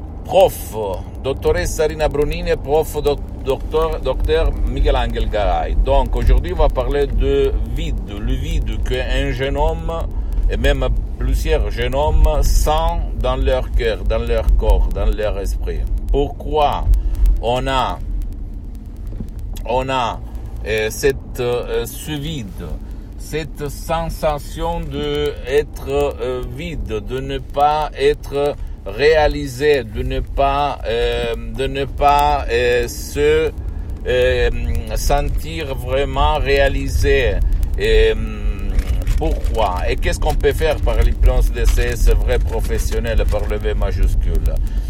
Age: 60-79